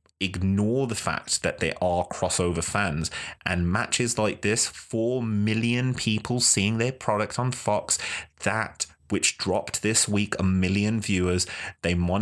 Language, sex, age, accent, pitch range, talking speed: English, male, 20-39, British, 85-105 Hz, 145 wpm